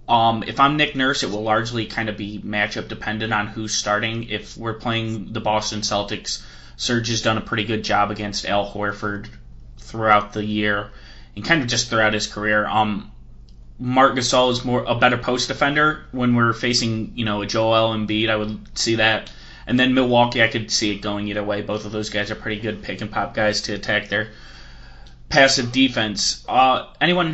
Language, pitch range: English, 105-120 Hz